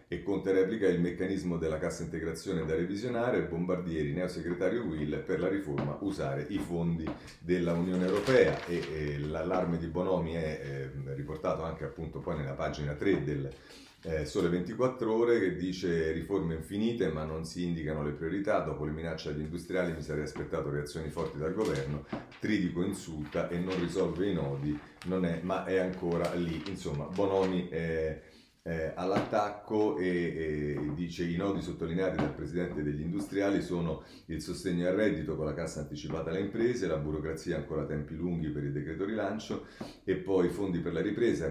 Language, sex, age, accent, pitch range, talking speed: Italian, male, 40-59, native, 80-95 Hz, 170 wpm